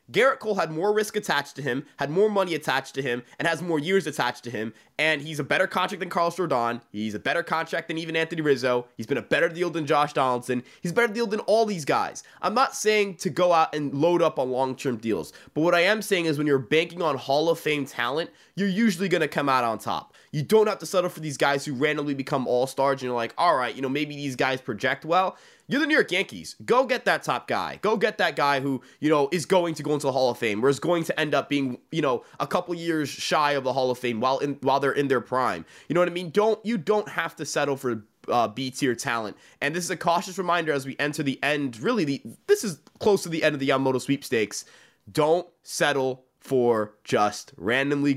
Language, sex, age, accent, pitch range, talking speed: English, male, 20-39, American, 130-175 Hz, 255 wpm